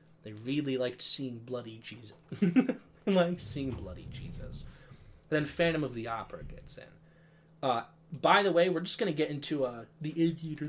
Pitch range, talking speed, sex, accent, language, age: 125-165 Hz, 175 wpm, male, American, English, 20-39